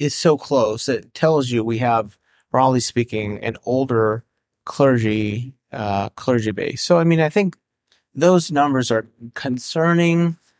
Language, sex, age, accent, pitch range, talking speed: English, male, 30-49, American, 115-145 Hz, 140 wpm